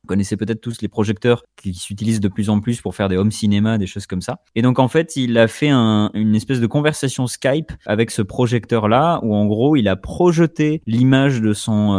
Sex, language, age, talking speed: male, French, 20-39, 225 wpm